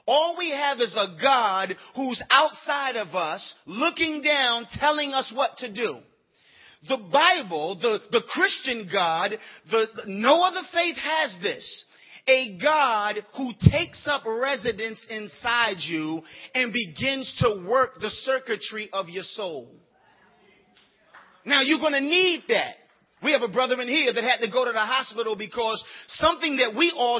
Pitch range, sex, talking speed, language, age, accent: 215-275 Hz, male, 150 wpm, English, 30-49, American